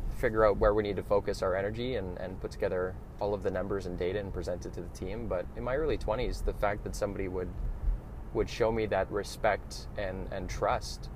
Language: English